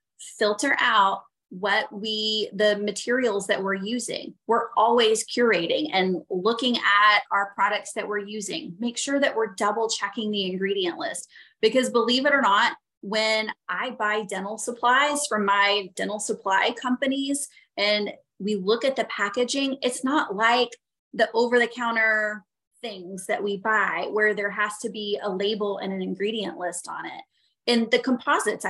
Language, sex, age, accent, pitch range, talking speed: English, female, 20-39, American, 200-245 Hz, 160 wpm